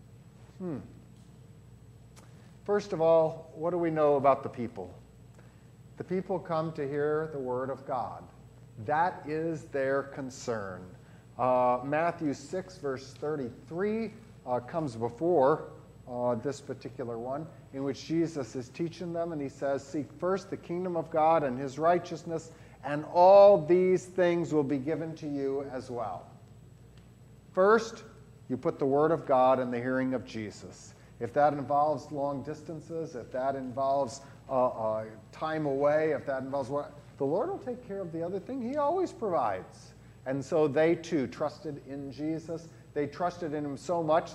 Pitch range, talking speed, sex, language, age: 130-170 Hz, 160 wpm, male, English, 40-59